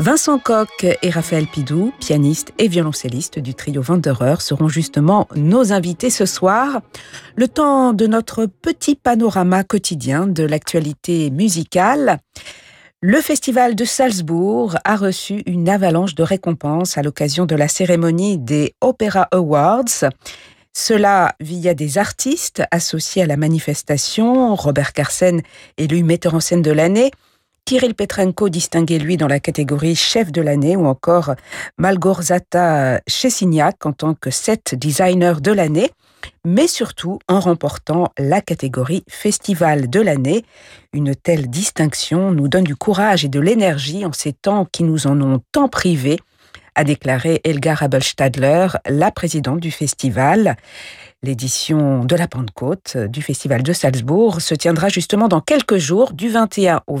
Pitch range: 145-200 Hz